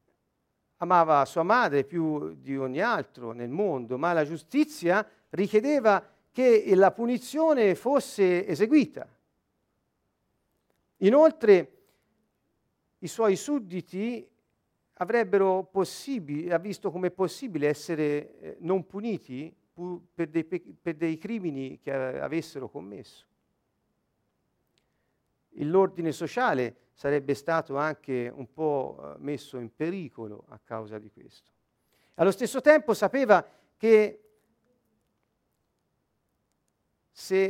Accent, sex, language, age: native, male, Italian, 50-69